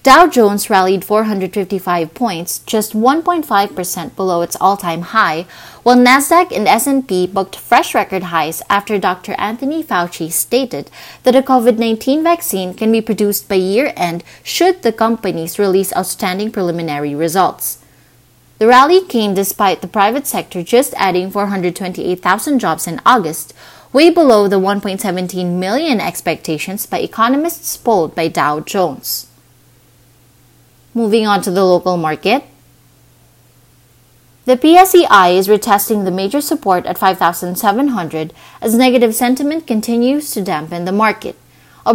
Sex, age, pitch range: female, 20-39, 180-245 Hz